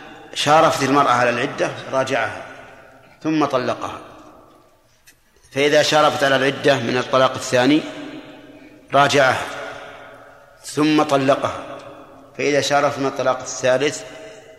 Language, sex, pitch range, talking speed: Arabic, male, 130-150 Hz, 90 wpm